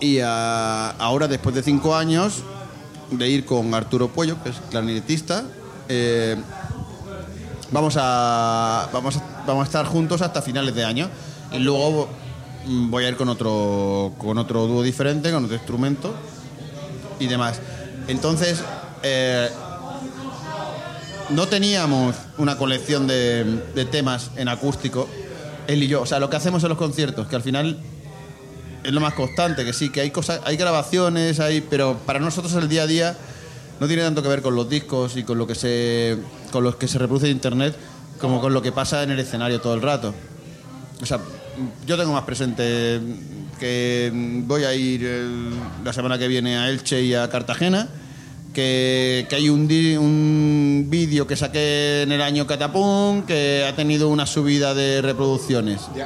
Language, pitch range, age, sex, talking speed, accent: Spanish, 125-150 Hz, 30-49, male, 170 wpm, Spanish